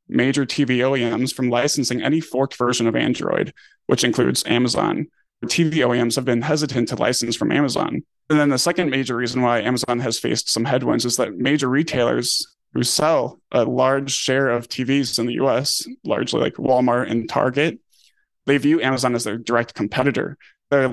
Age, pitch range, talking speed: 20-39, 120-140 Hz, 175 wpm